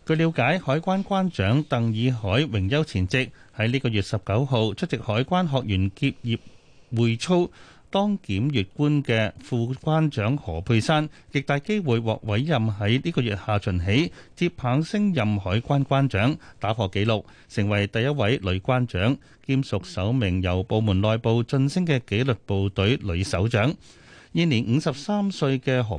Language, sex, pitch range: Chinese, male, 105-145 Hz